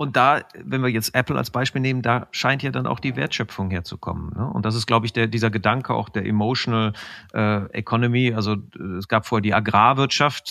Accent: German